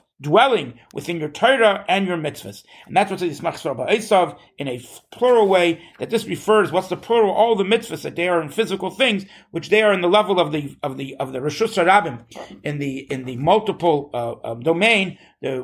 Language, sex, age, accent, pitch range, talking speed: English, male, 50-69, American, 155-210 Hz, 205 wpm